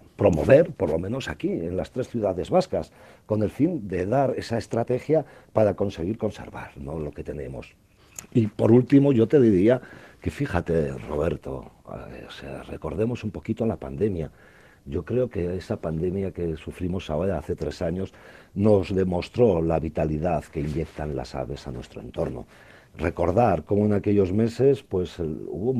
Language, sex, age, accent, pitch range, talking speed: Spanish, male, 50-69, Spanish, 85-125 Hz, 160 wpm